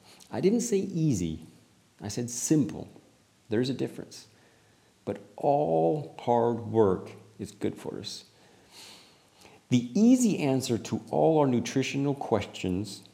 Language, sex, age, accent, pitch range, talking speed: English, male, 40-59, American, 105-135 Hz, 120 wpm